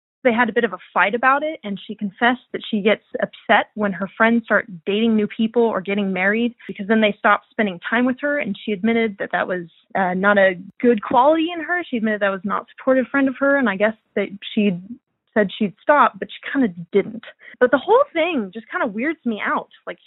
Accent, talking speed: American, 240 wpm